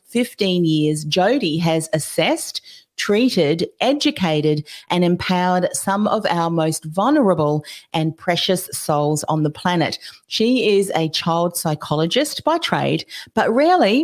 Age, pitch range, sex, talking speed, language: 40-59, 160-220 Hz, female, 125 wpm, English